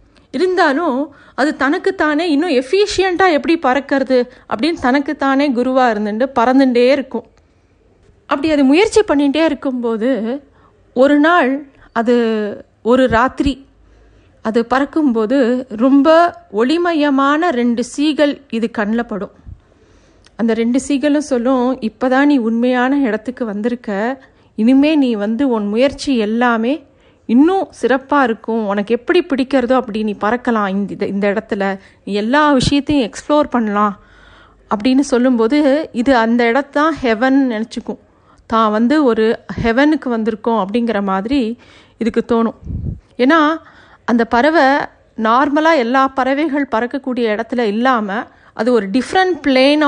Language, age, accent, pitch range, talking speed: Tamil, 50-69, native, 230-290 Hz, 110 wpm